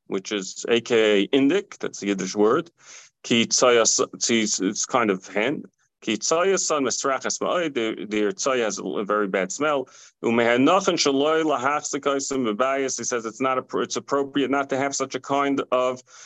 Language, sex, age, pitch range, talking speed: English, male, 40-59, 110-140 Hz, 165 wpm